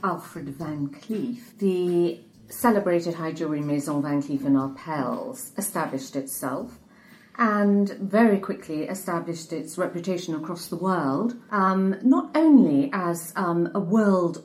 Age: 40-59